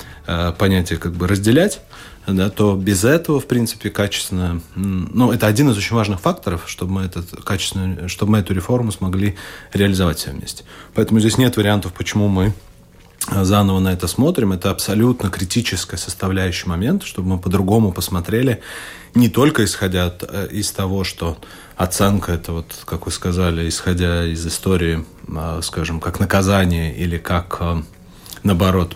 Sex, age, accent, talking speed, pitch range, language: male, 30-49, native, 145 wpm, 90-105 Hz, Russian